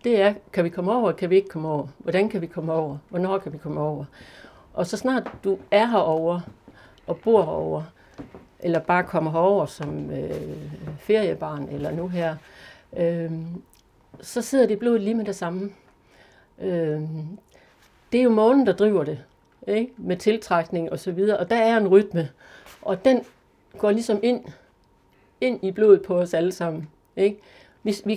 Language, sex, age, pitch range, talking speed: Danish, female, 60-79, 165-205 Hz, 175 wpm